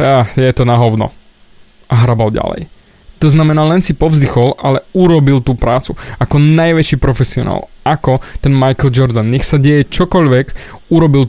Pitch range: 125-155 Hz